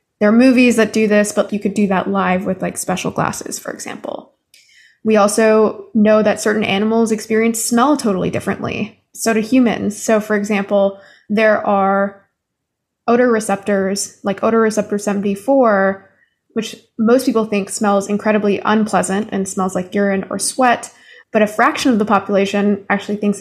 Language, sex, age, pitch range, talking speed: English, female, 20-39, 200-225 Hz, 160 wpm